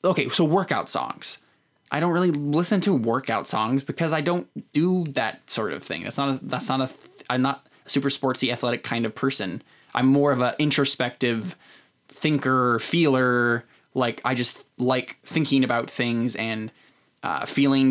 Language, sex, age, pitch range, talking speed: English, male, 10-29, 120-155 Hz, 165 wpm